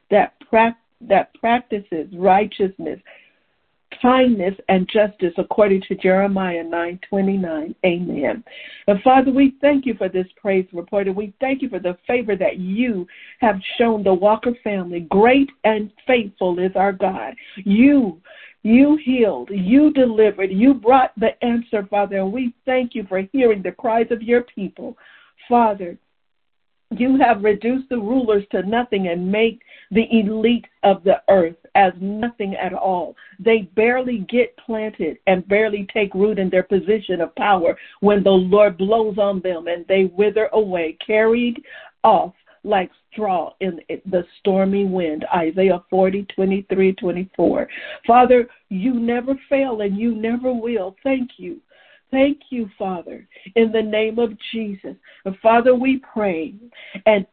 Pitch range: 190-240 Hz